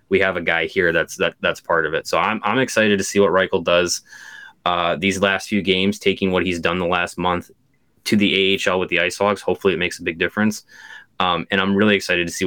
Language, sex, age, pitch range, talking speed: English, male, 20-39, 95-110 Hz, 250 wpm